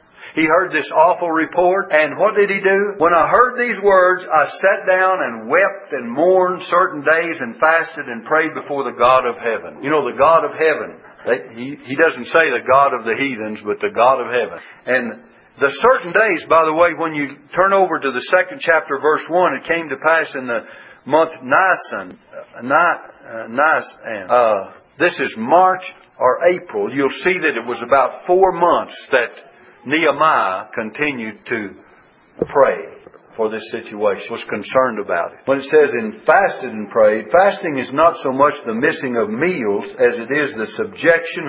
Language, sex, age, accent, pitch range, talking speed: English, male, 60-79, American, 130-185 Hz, 180 wpm